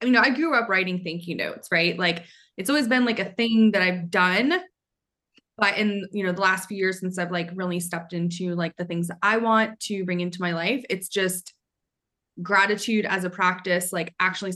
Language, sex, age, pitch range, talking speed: English, female, 20-39, 180-225 Hz, 220 wpm